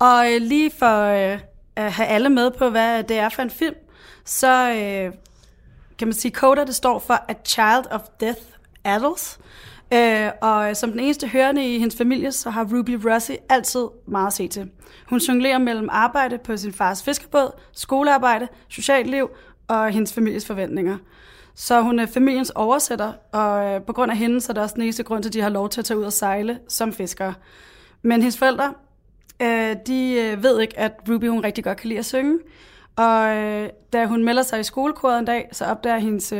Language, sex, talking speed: Danish, female, 195 wpm